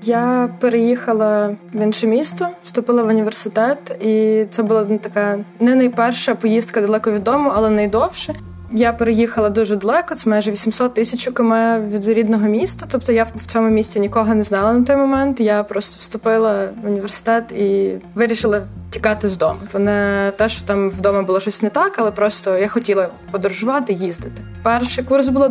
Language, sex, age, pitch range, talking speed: Ukrainian, female, 20-39, 205-235 Hz, 165 wpm